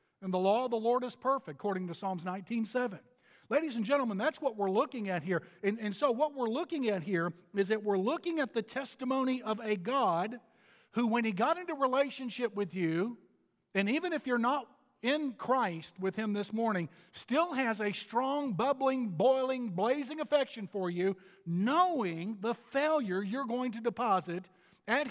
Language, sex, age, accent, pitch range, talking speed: English, male, 50-69, American, 195-270 Hz, 180 wpm